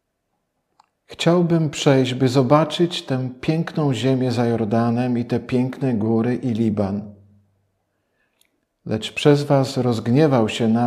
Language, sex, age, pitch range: Polish, male, 50-69, 110-145 Hz